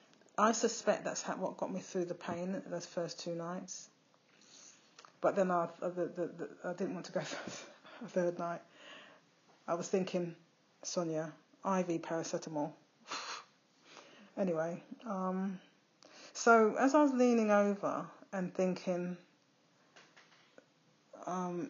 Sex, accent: female, British